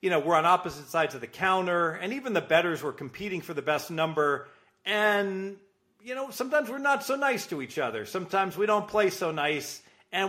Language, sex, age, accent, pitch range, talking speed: English, male, 40-59, American, 130-170 Hz, 215 wpm